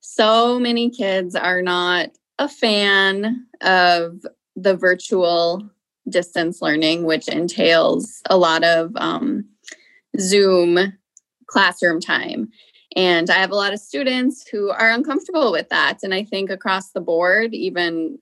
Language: English